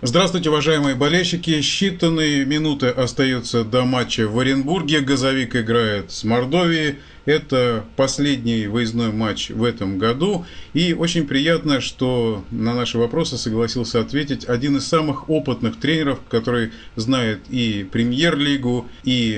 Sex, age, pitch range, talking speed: male, 30-49, 120-145 Hz, 125 wpm